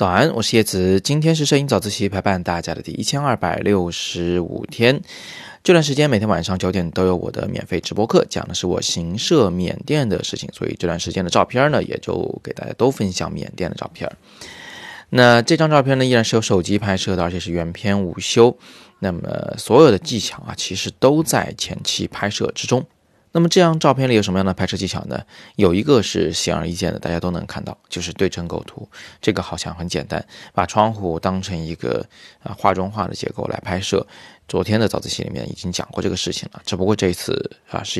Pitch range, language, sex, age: 90-115 Hz, Chinese, male, 20-39